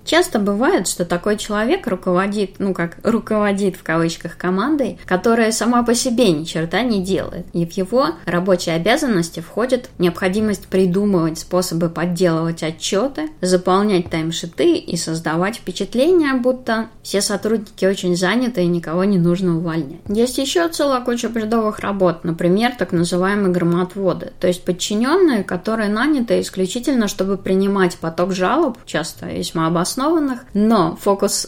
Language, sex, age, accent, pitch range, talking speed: Russian, female, 20-39, native, 175-225 Hz, 135 wpm